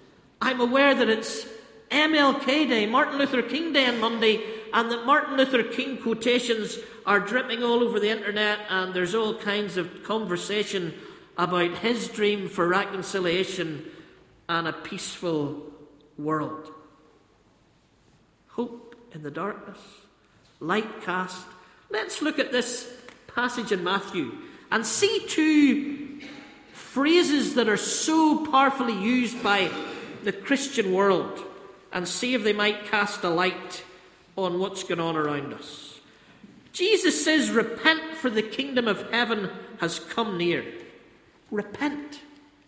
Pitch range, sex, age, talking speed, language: 185-275 Hz, male, 50-69, 130 wpm, English